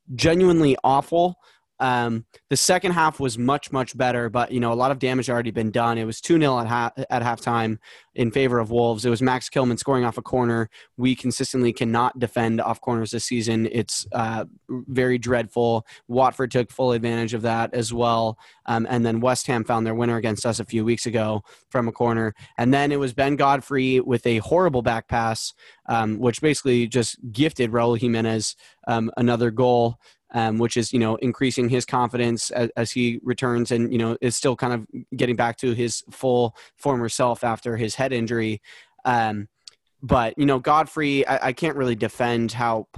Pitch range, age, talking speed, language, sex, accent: 115-130 Hz, 20-39, 195 wpm, English, male, American